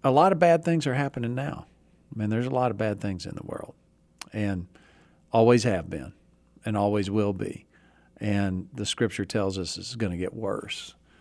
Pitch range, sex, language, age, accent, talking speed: 100-130 Hz, male, English, 50-69, American, 200 wpm